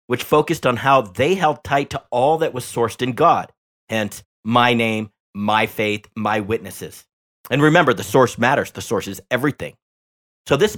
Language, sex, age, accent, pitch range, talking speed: English, male, 50-69, American, 110-145 Hz, 180 wpm